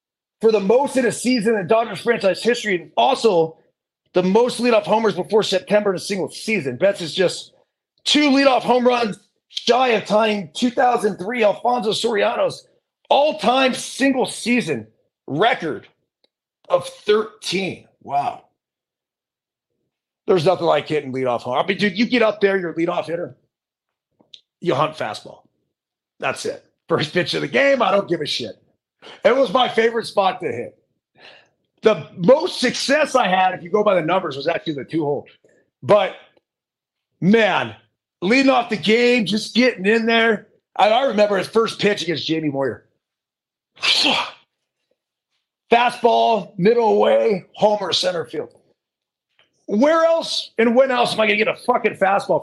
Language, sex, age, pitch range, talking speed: English, male, 30-49, 180-245 Hz, 155 wpm